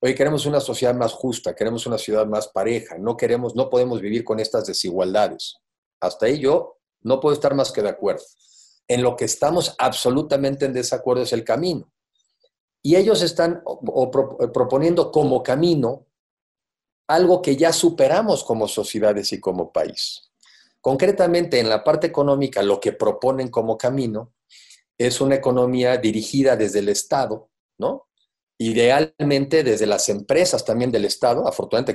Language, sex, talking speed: Spanish, male, 150 wpm